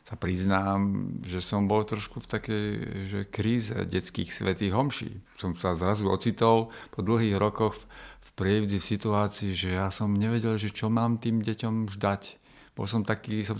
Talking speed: 170 wpm